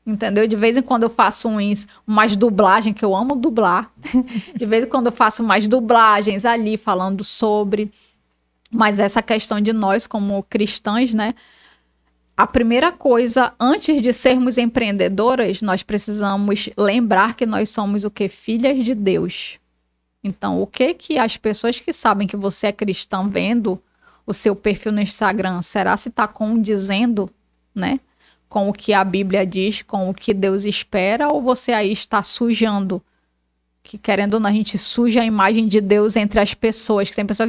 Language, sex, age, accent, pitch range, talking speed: Portuguese, female, 20-39, Brazilian, 205-245 Hz, 170 wpm